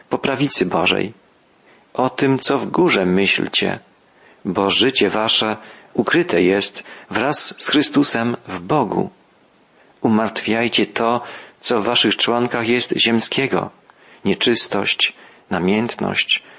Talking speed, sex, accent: 105 wpm, male, native